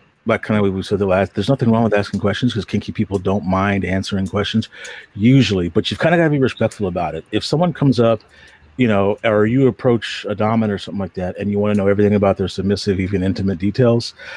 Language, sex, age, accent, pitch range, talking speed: English, male, 40-59, American, 100-120 Hz, 235 wpm